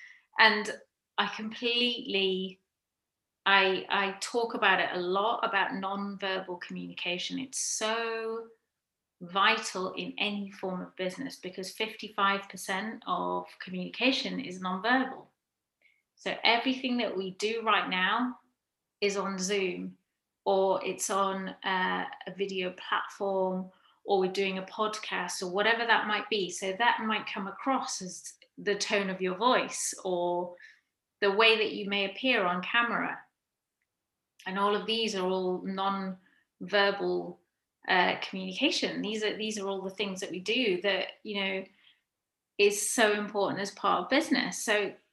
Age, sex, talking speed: 30-49, female, 140 wpm